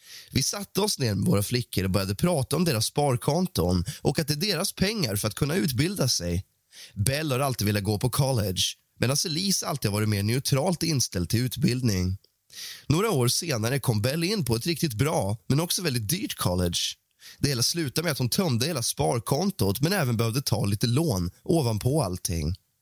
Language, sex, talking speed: Swedish, male, 190 wpm